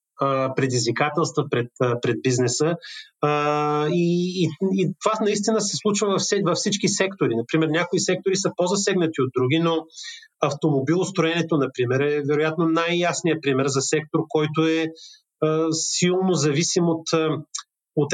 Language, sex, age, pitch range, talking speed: Bulgarian, male, 30-49, 140-170 Hz, 120 wpm